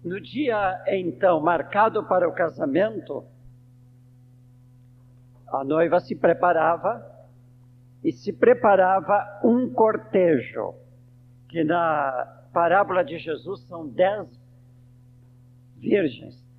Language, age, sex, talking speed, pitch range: Portuguese, 50-69, male, 85 wpm, 125-170 Hz